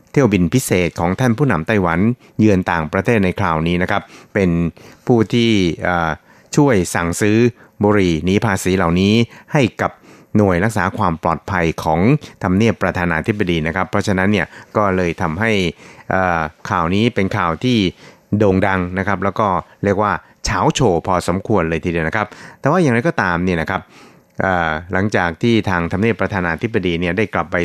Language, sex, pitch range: Thai, male, 90-110 Hz